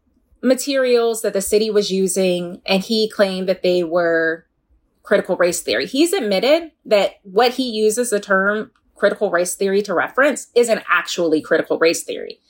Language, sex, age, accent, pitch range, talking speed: English, female, 20-39, American, 185-230 Hz, 160 wpm